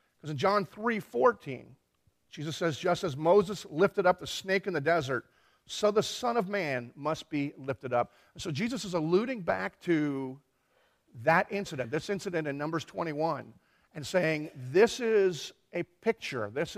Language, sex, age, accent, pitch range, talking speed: English, male, 50-69, American, 135-190 Hz, 170 wpm